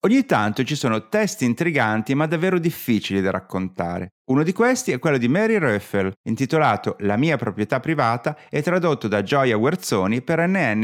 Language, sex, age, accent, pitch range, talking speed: Italian, male, 30-49, native, 110-180 Hz, 170 wpm